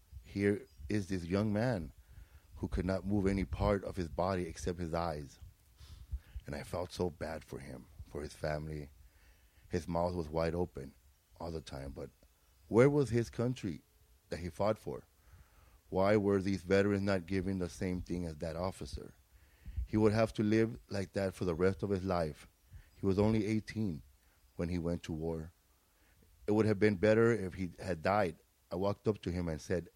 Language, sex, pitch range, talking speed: English, male, 80-100 Hz, 190 wpm